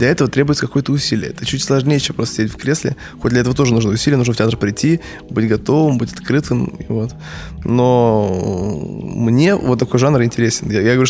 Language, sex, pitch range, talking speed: Russian, male, 110-130 Hz, 200 wpm